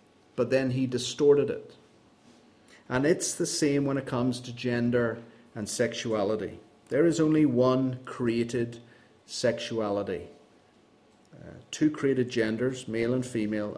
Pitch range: 120-150 Hz